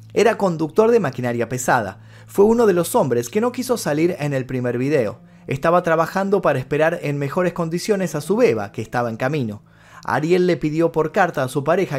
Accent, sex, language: Argentinian, male, Spanish